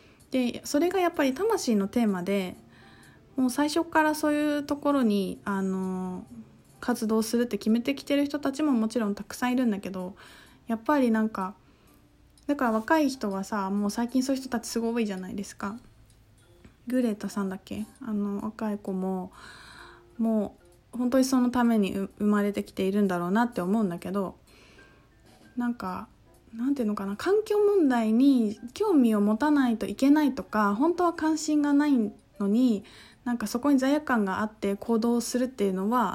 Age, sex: 20-39, female